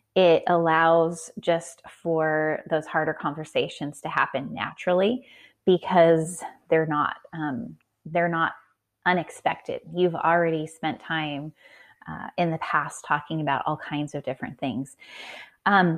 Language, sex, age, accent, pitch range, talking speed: English, female, 30-49, American, 150-175 Hz, 125 wpm